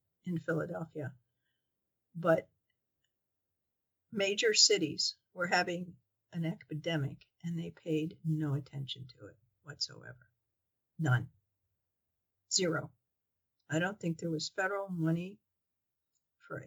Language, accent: English, American